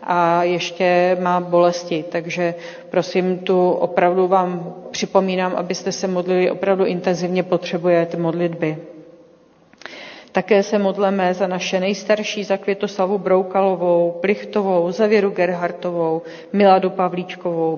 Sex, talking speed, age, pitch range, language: female, 100 wpm, 40-59, 170-185 Hz, Czech